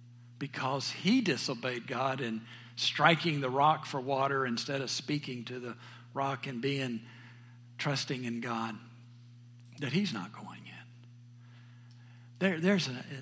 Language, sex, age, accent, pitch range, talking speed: English, male, 60-79, American, 120-140 Hz, 125 wpm